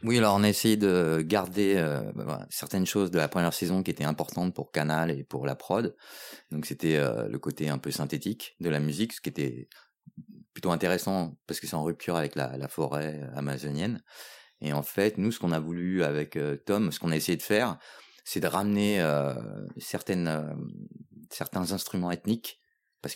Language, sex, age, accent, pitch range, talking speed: French, male, 30-49, French, 75-90 Hz, 195 wpm